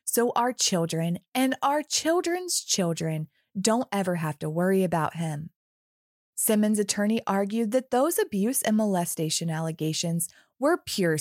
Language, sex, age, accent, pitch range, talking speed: English, female, 20-39, American, 180-300 Hz, 135 wpm